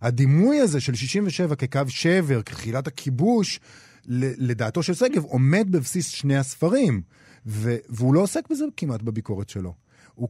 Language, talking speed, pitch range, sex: Hebrew, 140 wpm, 115-160 Hz, male